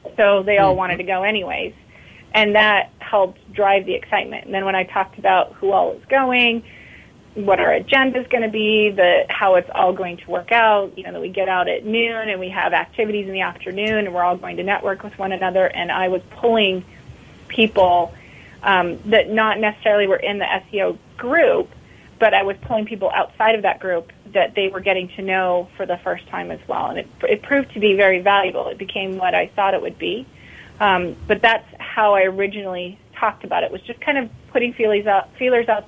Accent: American